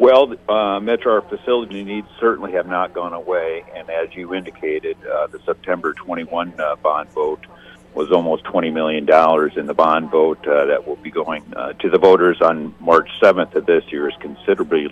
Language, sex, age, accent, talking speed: English, male, 50-69, American, 190 wpm